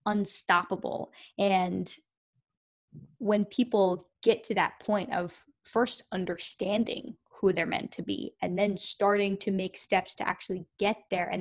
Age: 10-29